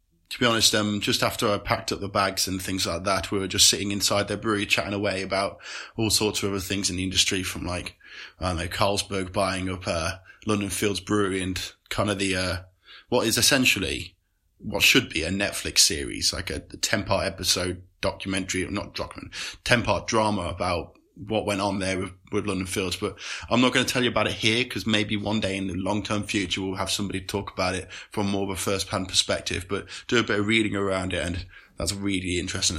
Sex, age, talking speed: male, 20-39, 225 wpm